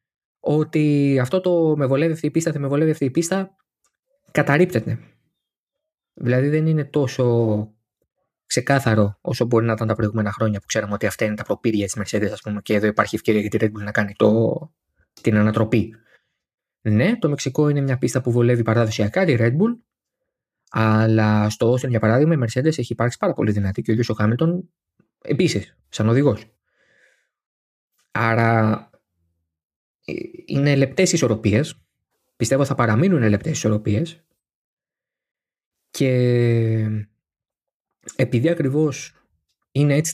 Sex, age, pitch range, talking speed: male, 20-39, 110-145 Hz, 140 wpm